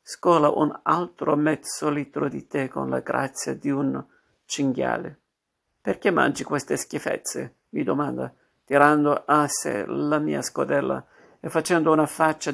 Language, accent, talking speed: Italian, native, 140 wpm